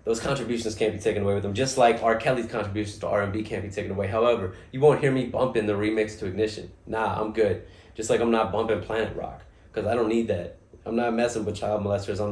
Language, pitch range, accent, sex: English, 100-130 Hz, American, male